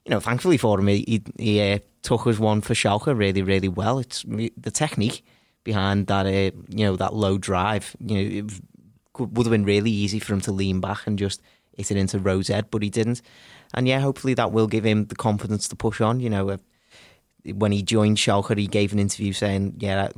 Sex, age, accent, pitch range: male, 20-39, British, 100-110 Hz